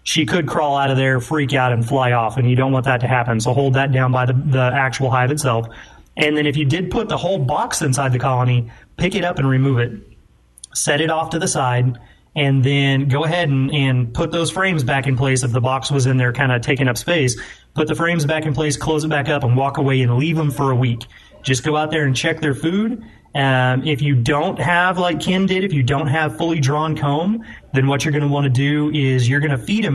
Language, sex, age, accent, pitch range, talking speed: English, male, 30-49, American, 130-155 Hz, 260 wpm